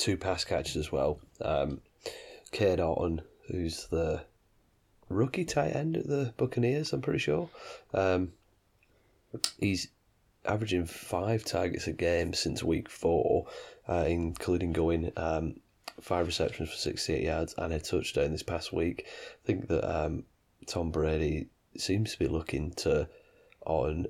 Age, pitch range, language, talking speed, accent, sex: 20-39, 80-105 Hz, English, 140 wpm, British, male